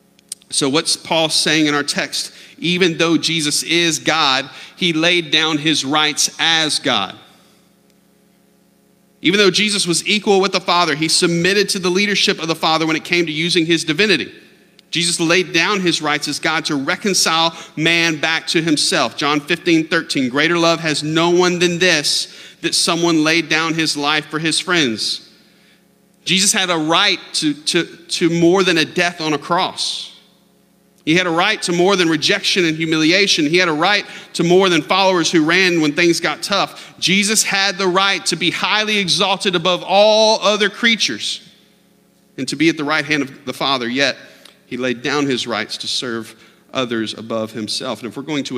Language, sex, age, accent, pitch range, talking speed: English, male, 40-59, American, 155-195 Hz, 185 wpm